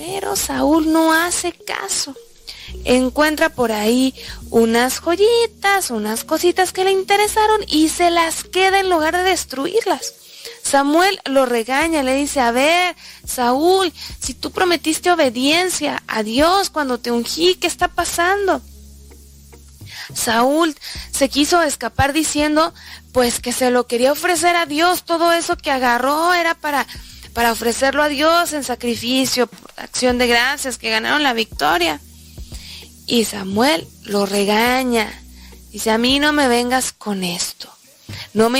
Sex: female